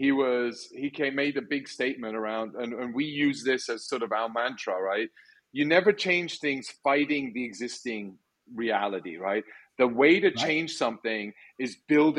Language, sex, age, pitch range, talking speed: English, male, 40-59, 135-180 Hz, 175 wpm